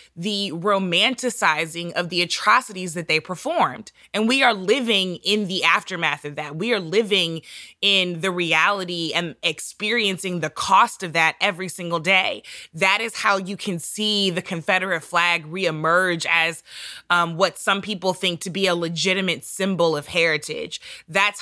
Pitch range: 165-200 Hz